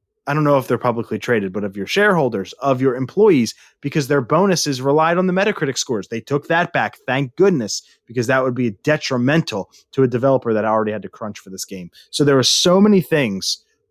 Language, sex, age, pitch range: English, male, 30-49, 130-170 Hz